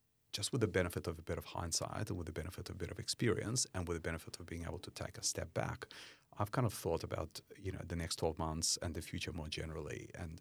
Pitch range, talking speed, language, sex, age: 85-105 Hz, 270 wpm, English, male, 30-49